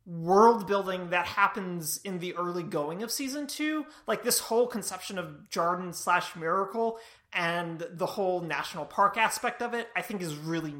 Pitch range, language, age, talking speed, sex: 165-210 Hz, English, 30-49, 170 wpm, male